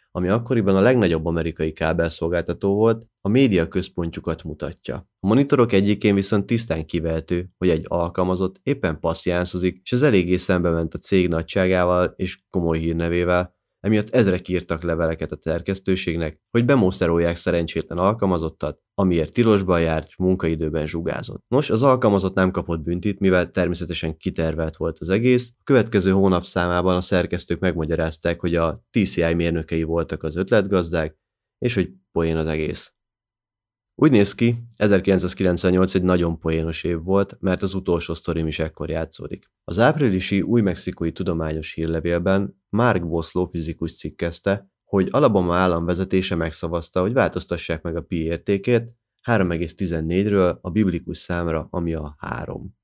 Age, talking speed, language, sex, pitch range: 30-49, 140 wpm, Hungarian, male, 85-100 Hz